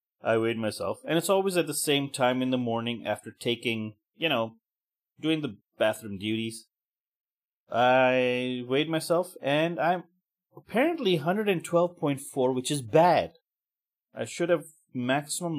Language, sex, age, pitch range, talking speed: English, male, 30-49, 110-155 Hz, 135 wpm